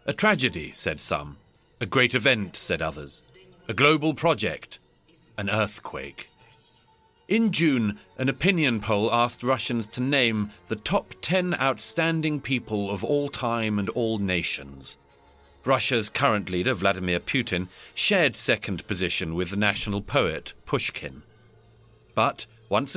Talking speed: 130 wpm